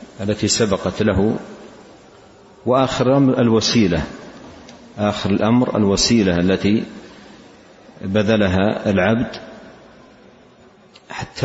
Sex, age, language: male, 50-69, Arabic